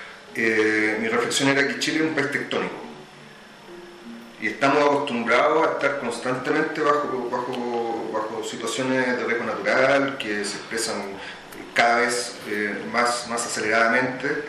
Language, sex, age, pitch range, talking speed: Spanish, male, 30-49, 115-145 Hz, 130 wpm